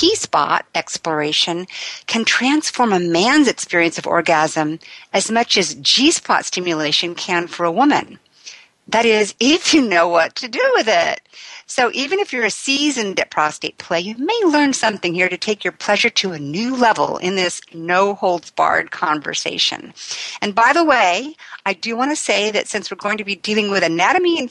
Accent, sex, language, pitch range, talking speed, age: American, female, English, 170-250 Hz, 180 wpm, 50-69